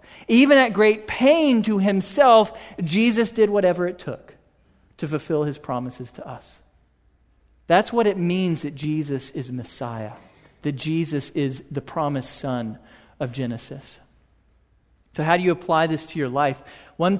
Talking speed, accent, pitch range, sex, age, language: 150 wpm, American, 140-190 Hz, male, 40-59, English